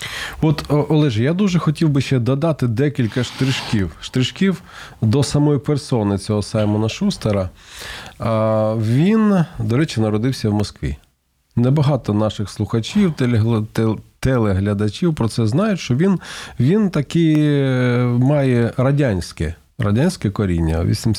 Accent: native